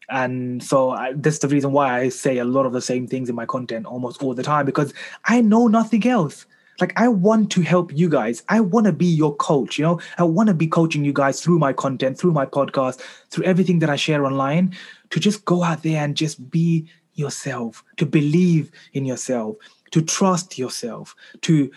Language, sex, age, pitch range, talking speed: English, male, 20-39, 135-175 Hz, 210 wpm